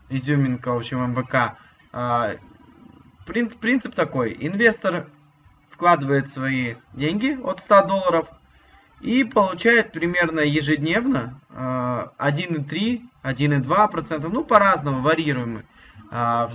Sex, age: male, 20-39